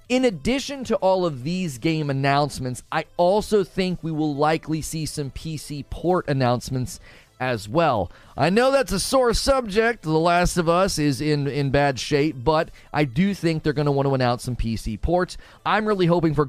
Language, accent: English, American